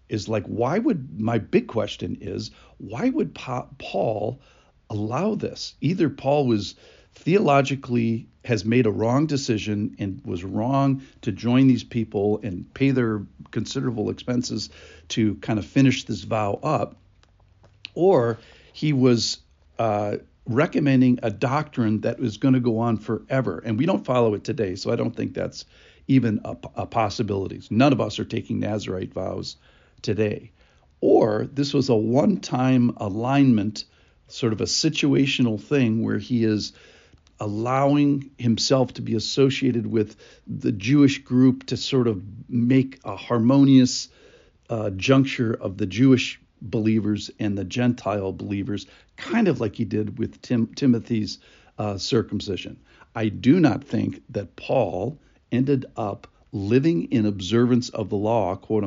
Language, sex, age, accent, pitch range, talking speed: English, male, 50-69, American, 105-130 Hz, 145 wpm